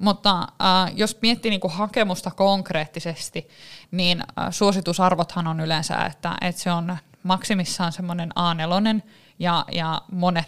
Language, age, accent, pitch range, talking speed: Finnish, 20-39, native, 170-200 Hz, 125 wpm